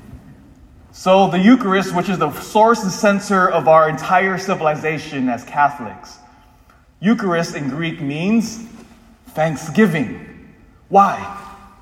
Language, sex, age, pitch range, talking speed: English, male, 30-49, 165-225 Hz, 105 wpm